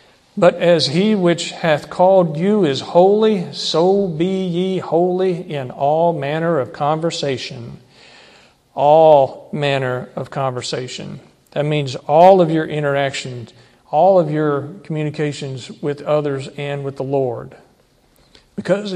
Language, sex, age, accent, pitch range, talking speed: English, male, 50-69, American, 140-170 Hz, 125 wpm